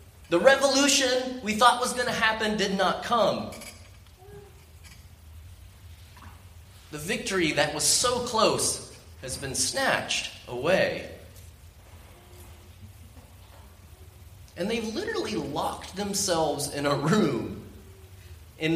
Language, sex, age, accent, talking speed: English, male, 30-49, American, 95 wpm